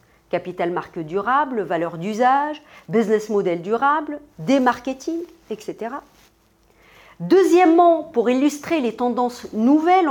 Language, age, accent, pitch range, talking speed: French, 50-69, French, 210-300 Hz, 95 wpm